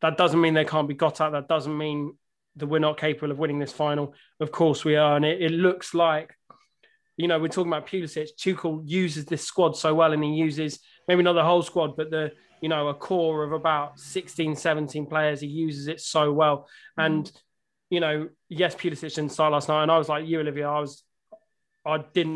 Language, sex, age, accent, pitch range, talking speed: English, male, 20-39, British, 150-170 Hz, 225 wpm